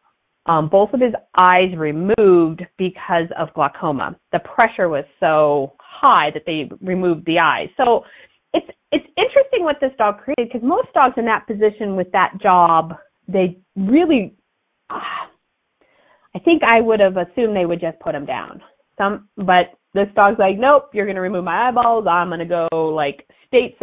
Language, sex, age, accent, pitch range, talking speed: English, female, 30-49, American, 175-245 Hz, 175 wpm